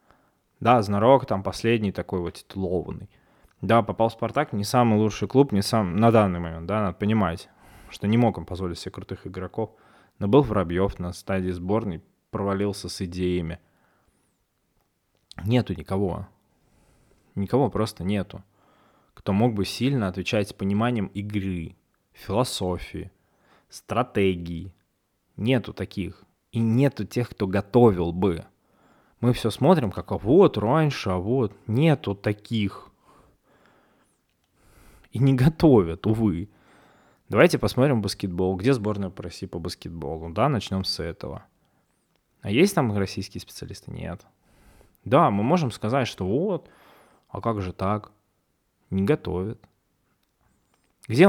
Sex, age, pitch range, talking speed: male, 20-39, 95-115 Hz, 130 wpm